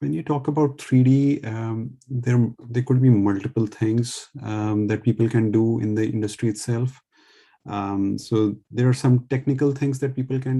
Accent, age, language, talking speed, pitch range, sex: Indian, 30-49, English, 175 wpm, 105-125 Hz, male